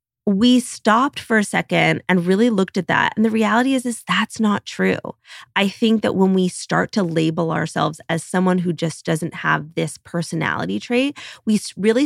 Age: 20-39